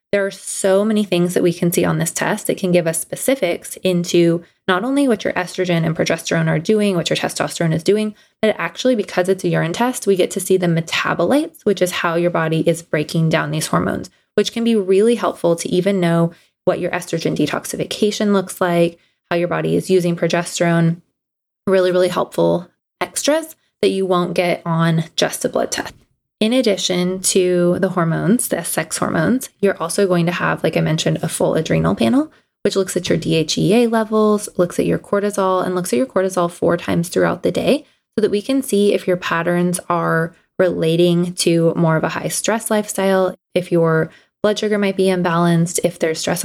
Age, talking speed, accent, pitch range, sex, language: 20-39, 200 wpm, American, 170-205 Hz, female, English